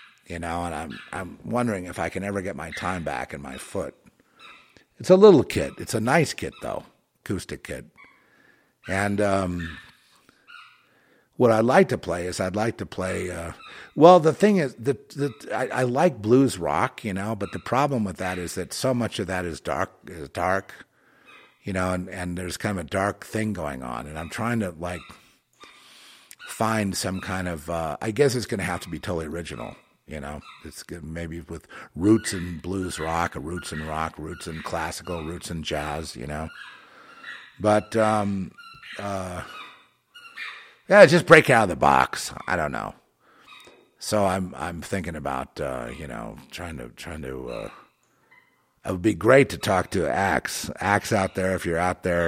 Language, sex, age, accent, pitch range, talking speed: English, male, 50-69, American, 85-110 Hz, 185 wpm